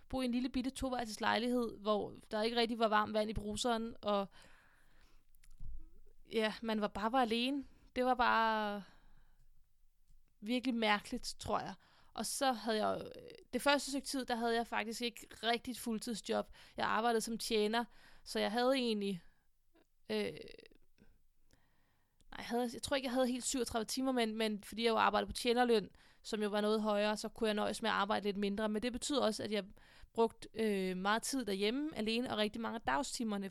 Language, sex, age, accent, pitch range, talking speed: Danish, female, 20-39, native, 215-245 Hz, 190 wpm